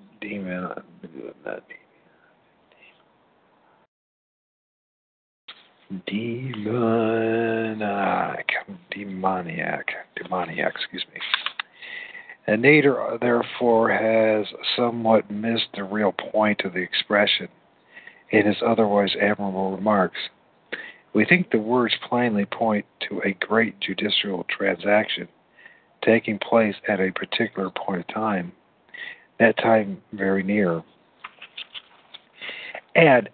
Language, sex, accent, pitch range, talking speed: English, male, American, 100-115 Hz, 90 wpm